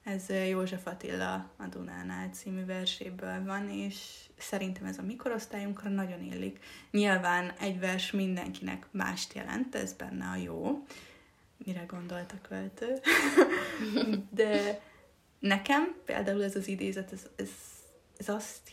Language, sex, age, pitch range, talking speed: Hungarian, female, 20-39, 135-205 Hz, 120 wpm